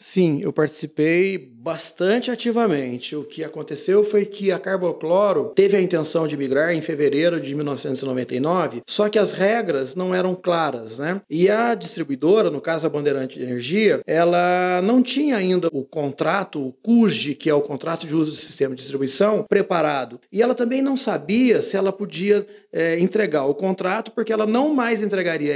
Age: 40-59